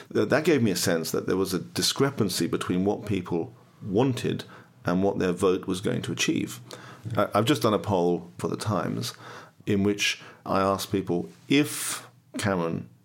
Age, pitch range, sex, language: 40-59, 85-110 Hz, male, English